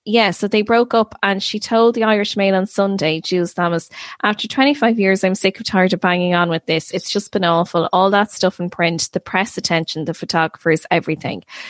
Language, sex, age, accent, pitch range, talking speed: English, female, 20-39, Irish, 165-205 Hz, 215 wpm